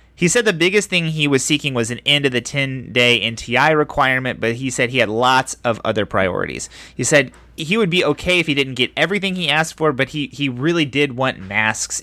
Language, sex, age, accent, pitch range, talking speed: English, male, 30-49, American, 115-150 Hz, 230 wpm